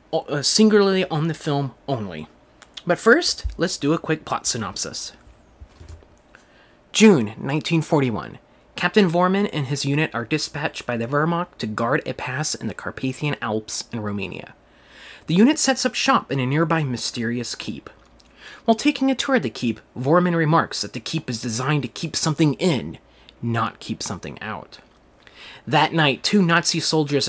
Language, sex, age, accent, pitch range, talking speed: English, male, 30-49, American, 125-170 Hz, 160 wpm